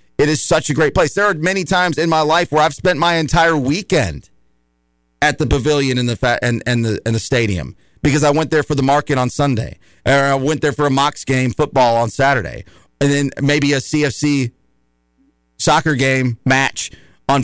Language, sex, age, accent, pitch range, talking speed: English, male, 40-59, American, 115-145 Hz, 205 wpm